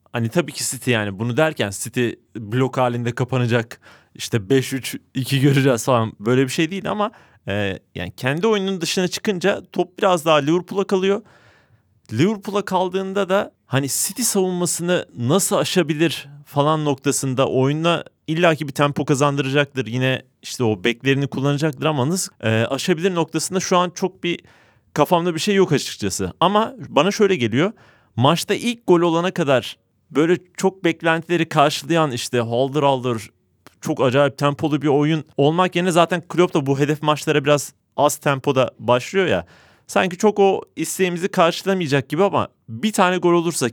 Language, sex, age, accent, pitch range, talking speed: Turkish, male, 40-59, native, 130-175 Hz, 150 wpm